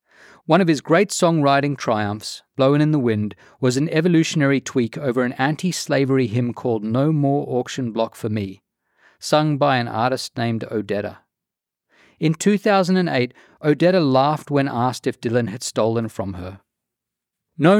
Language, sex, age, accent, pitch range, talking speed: English, male, 40-59, Australian, 110-145 Hz, 150 wpm